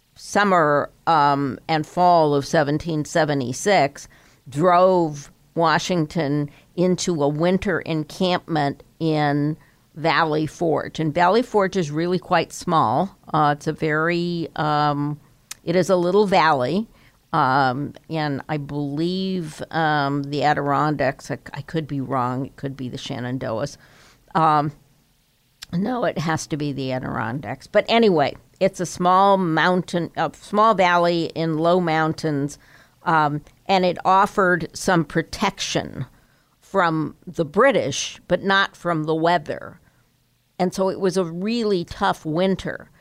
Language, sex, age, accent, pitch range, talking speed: English, female, 50-69, American, 145-180 Hz, 125 wpm